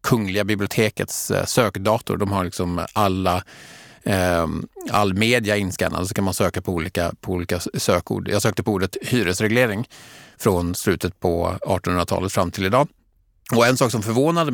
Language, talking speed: Swedish, 155 wpm